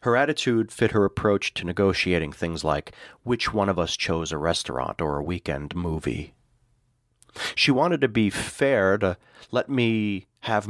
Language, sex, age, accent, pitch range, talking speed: English, male, 40-59, American, 90-120 Hz, 165 wpm